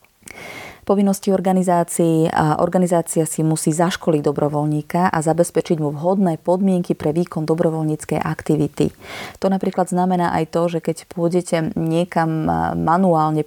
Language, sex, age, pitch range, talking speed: Slovak, female, 30-49, 155-175 Hz, 115 wpm